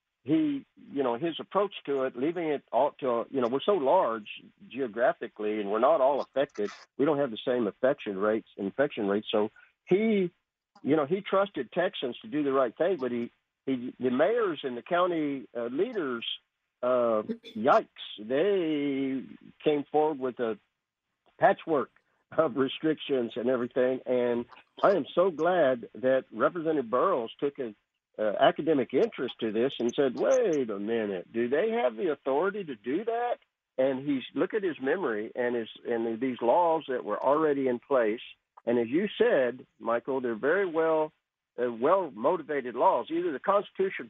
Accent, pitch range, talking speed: American, 120-170 Hz, 165 wpm